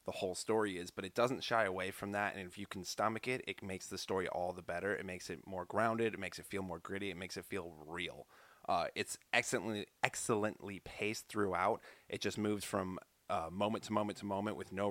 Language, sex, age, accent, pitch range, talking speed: English, male, 20-39, American, 95-105 Hz, 235 wpm